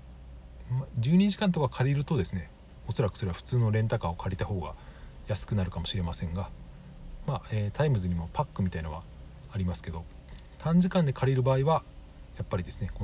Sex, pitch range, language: male, 75-120 Hz, Japanese